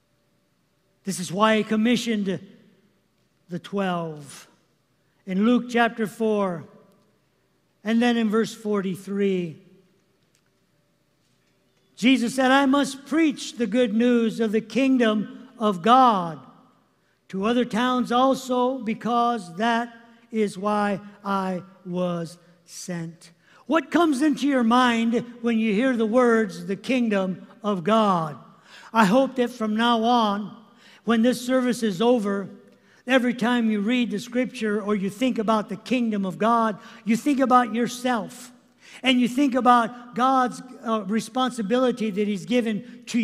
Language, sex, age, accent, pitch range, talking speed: English, male, 50-69, American, 205-245 Hz, 130 wpm